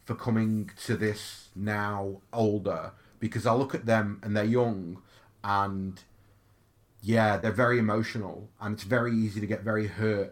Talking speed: 155 wpm